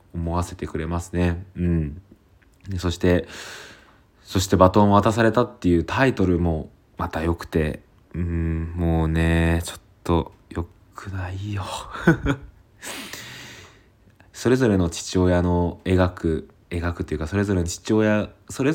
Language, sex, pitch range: Japanese, male, 85-100 Hz